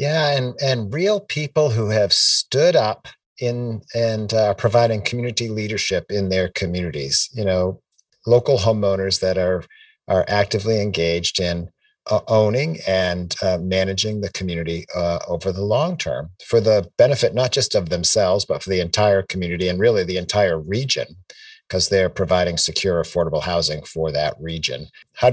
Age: 50-69